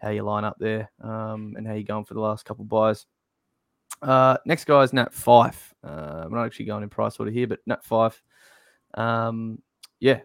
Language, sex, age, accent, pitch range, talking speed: English, male, 20-39, Australian, 110-120 Hz, 210 wpm